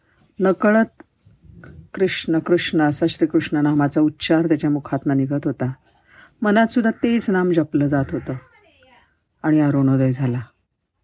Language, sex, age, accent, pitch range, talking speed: Marathi, female, 50-69, native, 145-175 Hz, 110 wpm